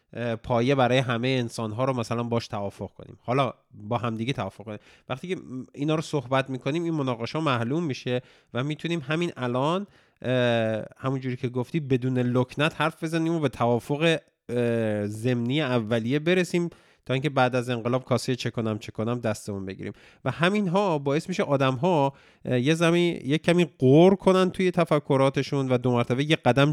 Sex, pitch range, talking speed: male, 110-145 Hz, 165 wpm